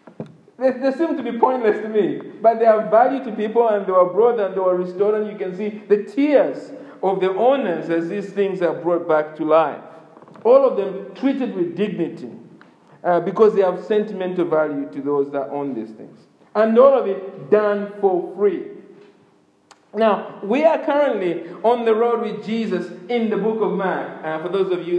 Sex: male